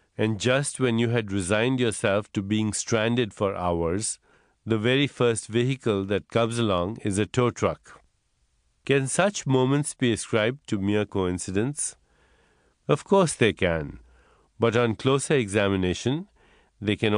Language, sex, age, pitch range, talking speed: English, male, 50-69, 95-120 Hz, 145 wpm